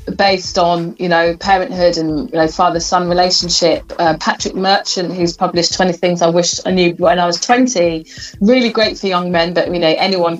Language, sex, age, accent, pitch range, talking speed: English, female, 30-49, British, 165-205 Hz, 195 wpm